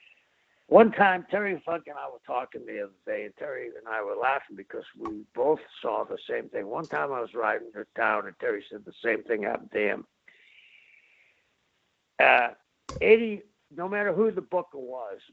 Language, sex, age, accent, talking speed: English, male, 60-79, American, 190 wpm